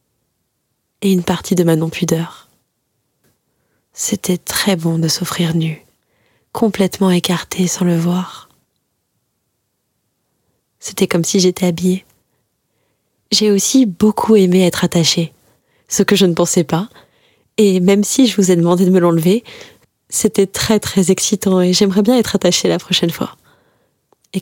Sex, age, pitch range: female, 20-39, 175-195 Hz